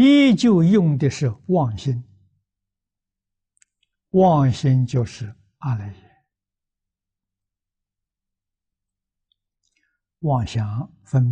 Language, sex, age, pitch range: Chinese, male, 60-79, 95-130 Hz